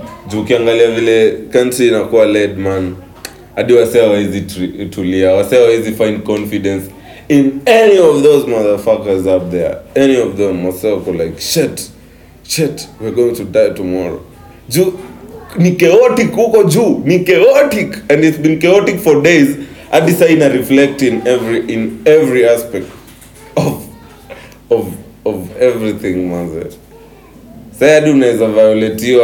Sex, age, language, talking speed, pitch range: male, 30-49, Swahili, 115 wpm, 100-150 Hz